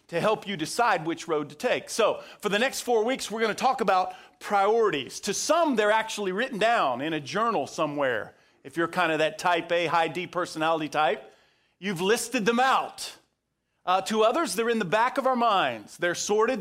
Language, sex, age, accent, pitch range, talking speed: English, male, 40-59, American, 180-235 Hz, 205 wpm